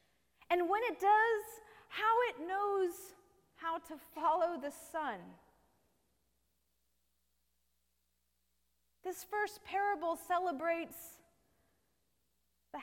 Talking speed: 80 wpm